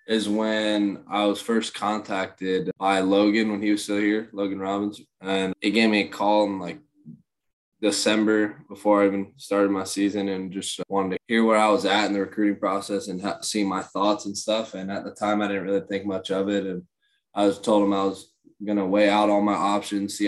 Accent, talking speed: American, 220 wpm